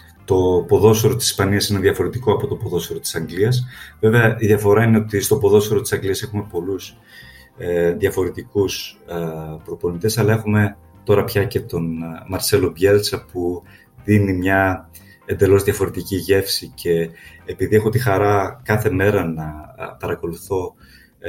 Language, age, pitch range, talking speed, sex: Greek, 30-49, 90-110 Hz, 130 wpm, male